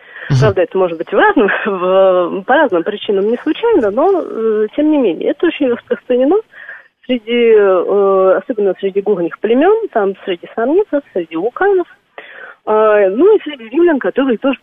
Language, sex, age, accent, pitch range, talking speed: Russian, female, 30-49, native, 205-320 Hz, 145 wpm